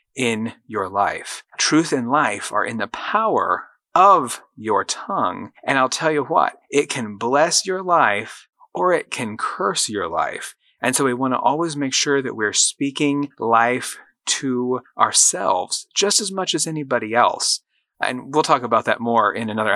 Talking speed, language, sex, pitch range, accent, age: 175 wpm, English, male, 115-145 Hz, American, 30-49